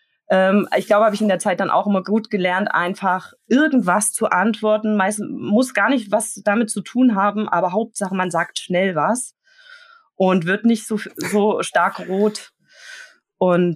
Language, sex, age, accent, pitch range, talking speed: German, female, 20-39, German, 180-225 Hz, 170 wpm